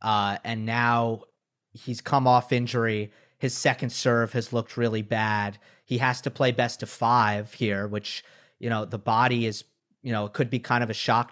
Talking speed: 195 wpm